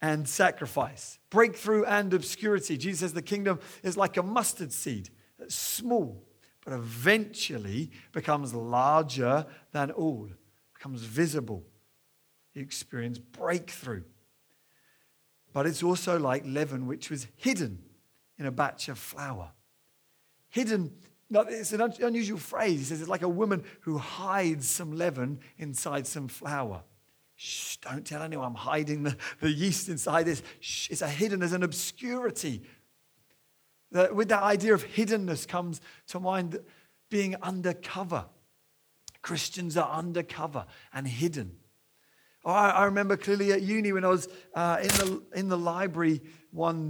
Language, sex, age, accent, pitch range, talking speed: English, male, 40-59, British, 140-190 Hz, 140 wpm